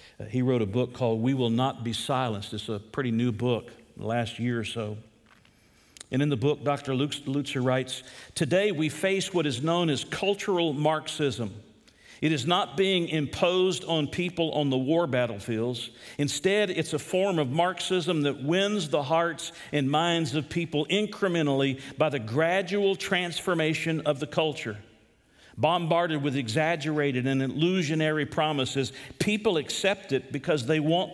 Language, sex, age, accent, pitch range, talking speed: English, male, 50-69, American, 130-180 Hz, 155 wpm